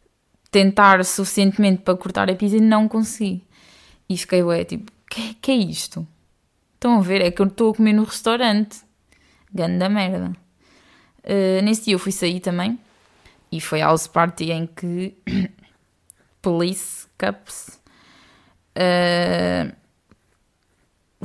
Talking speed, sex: 135 wpm, female